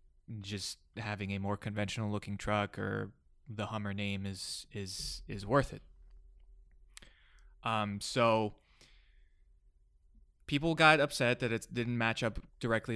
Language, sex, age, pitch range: English, male, 20-39, 95-115 Hz